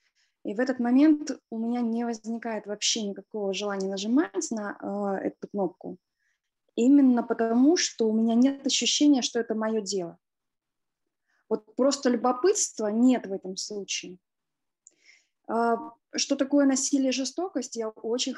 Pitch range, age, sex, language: 210-260 Hz, 20-39, female, Russian